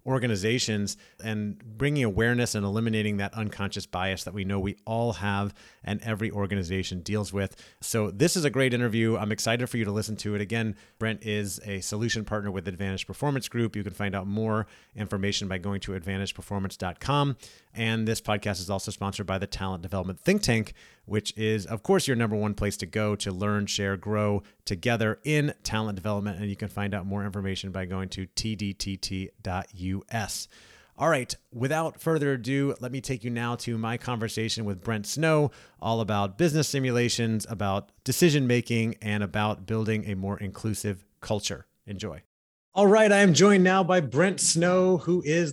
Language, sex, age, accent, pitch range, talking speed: English, male, 30-49, American, 100-140 Hz, 180 wpm